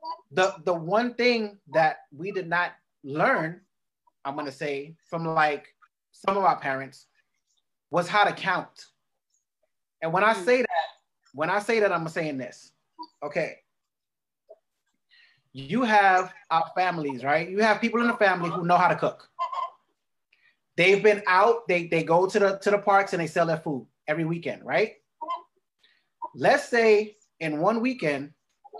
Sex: male